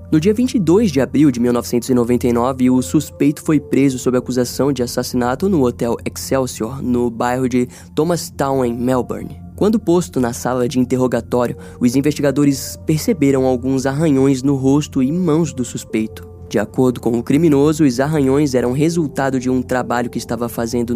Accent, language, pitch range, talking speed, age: Brazilian, Portuguese, 120-145 Hz, 155 wpm, 10-29